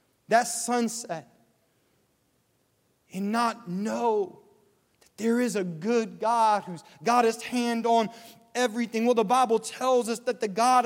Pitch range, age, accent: 225-280 Hz, 30-49, American